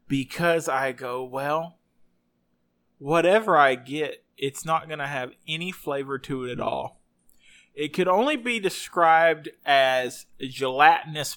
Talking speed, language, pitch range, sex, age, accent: 130 wpm, English, 125-170 Hz, male, 30-49, American